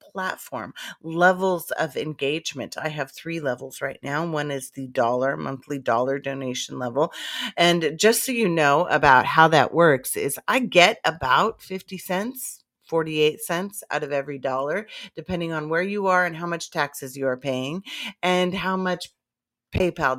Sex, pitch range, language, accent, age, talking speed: female, 140-175 Hz, English, American, 40-59, 165 wpm